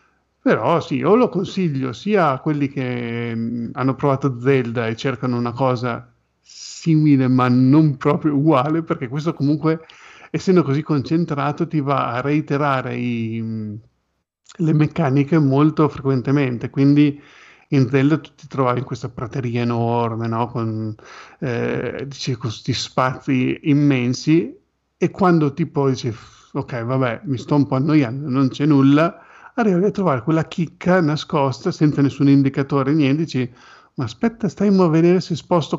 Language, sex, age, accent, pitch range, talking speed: Italian, male, 50-69, native, 125-155 Hz, 140 wpm